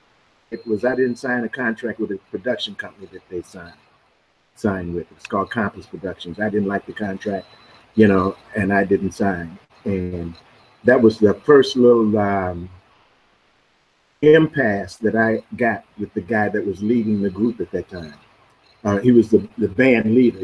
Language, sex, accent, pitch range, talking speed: English, male, American, 100-125 Hz, 175 wpm